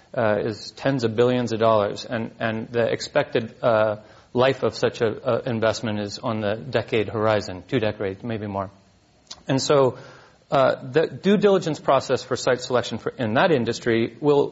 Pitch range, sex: 115-140 Hz, male